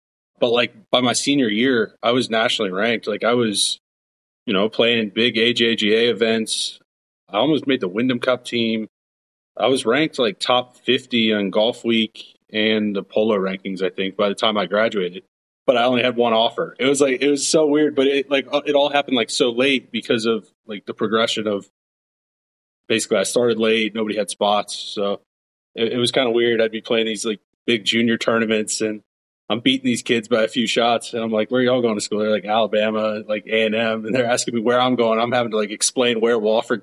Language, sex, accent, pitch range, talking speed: English, male, American, 105-125 Hz, 220 wpm